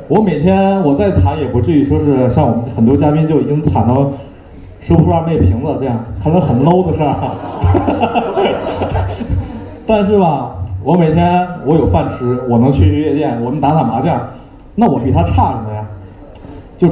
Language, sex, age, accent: Chinese, male, 30-49, native